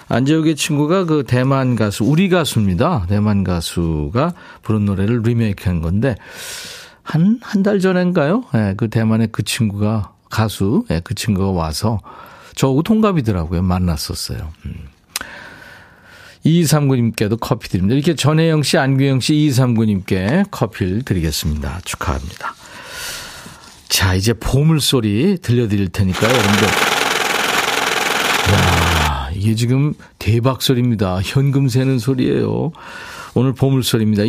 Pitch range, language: 95-140 Hz, Korean